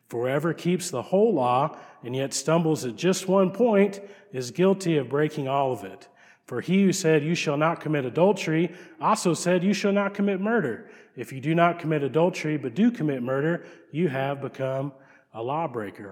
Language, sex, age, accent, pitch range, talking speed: English, male, 40-59, American, 140-180 Hz, 185 wpm